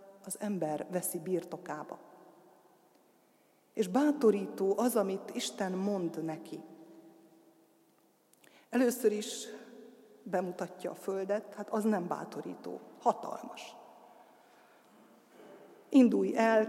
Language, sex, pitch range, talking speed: Hungarian, female, 185-220 Hz, 85 wpm